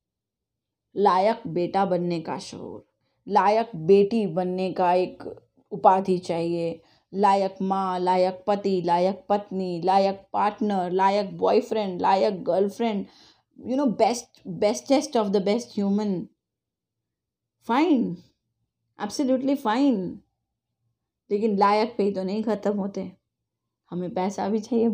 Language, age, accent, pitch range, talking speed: Hindi, 20-39, native, 185-230 Hz, 115 wpm